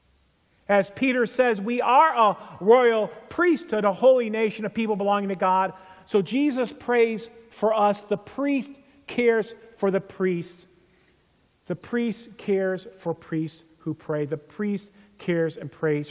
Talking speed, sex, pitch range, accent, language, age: 145 wpm, male, 160-220 Hz, American, English, 50-69